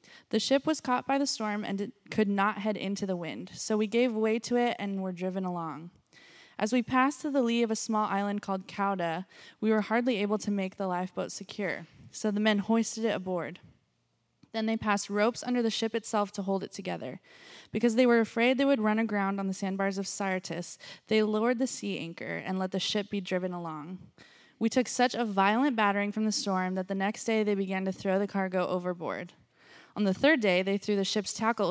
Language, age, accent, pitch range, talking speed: English, 20-39, American, 190-225 Hz, 225 wpm